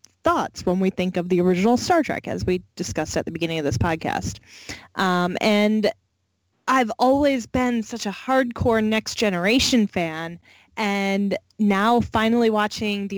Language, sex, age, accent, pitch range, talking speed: English, female, 10-29, American, 170-230 Hz, 150 wpm